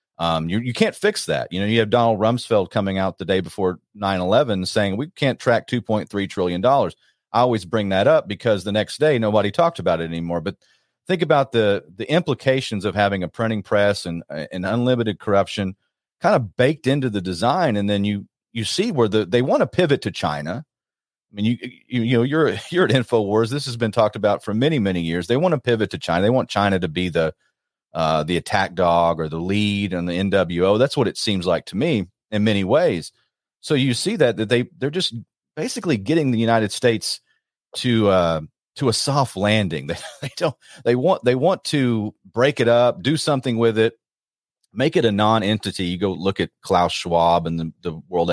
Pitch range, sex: 95-120 Hz, male